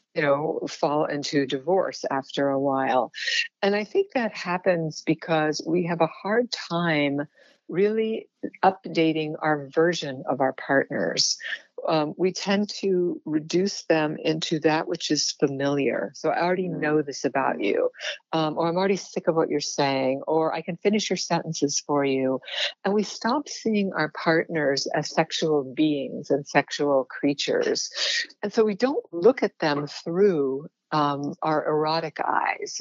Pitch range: 145-190 Hz